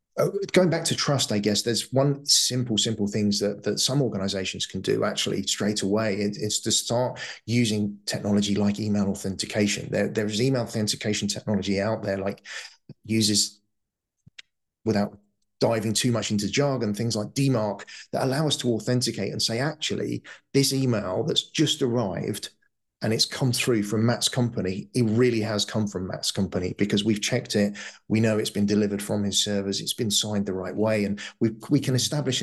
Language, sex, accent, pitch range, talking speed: English, male, British, 100-125 Hz, 175 wpm